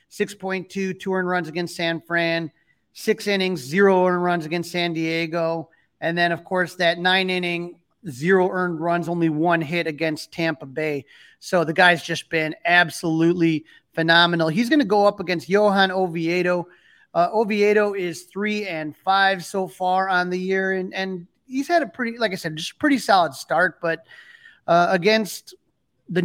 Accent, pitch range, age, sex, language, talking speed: American, 165-195 Hz, 30-49, male, English, 165 wpm